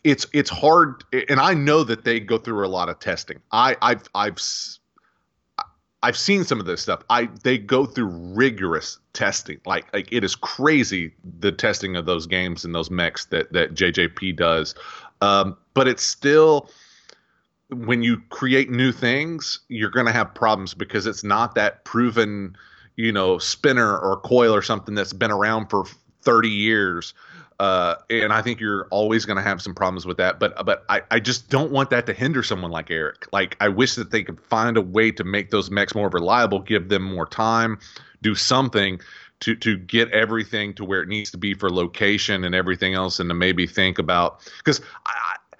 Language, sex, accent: English, male, American